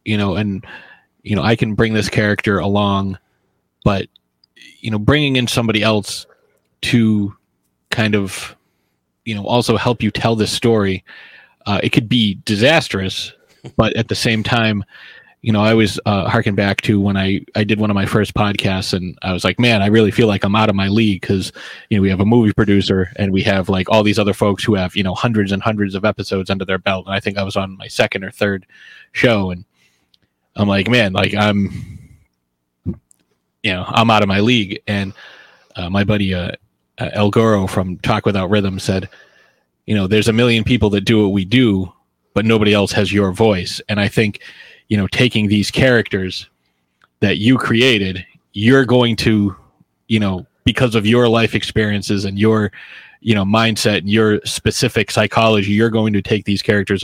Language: English